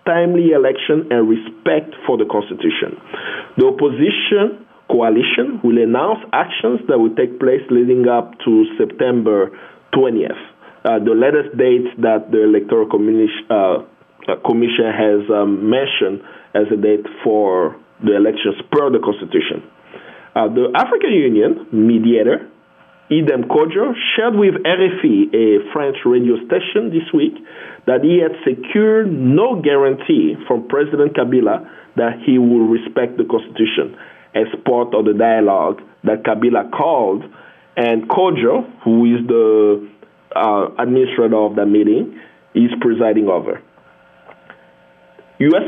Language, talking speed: English, 125 wpm